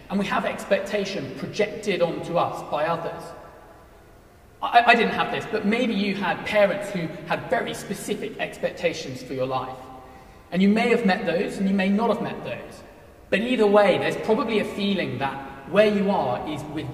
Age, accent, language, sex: 30-49, British, English, male